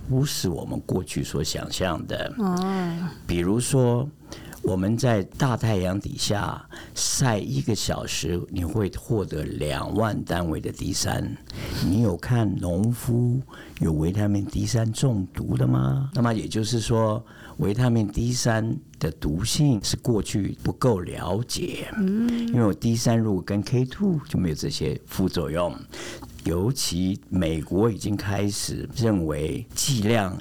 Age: 50-69